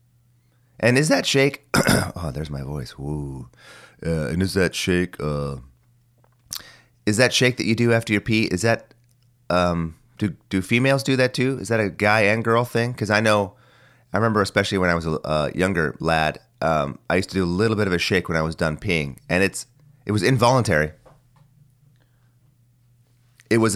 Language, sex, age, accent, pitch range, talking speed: English, male, 30-49, American, 90-120 Hz, 190 wpm